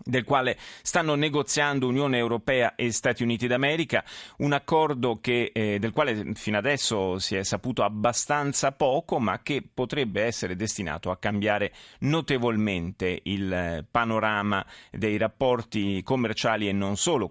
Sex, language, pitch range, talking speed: male, Italian, 100-125 Hz, 130 wpm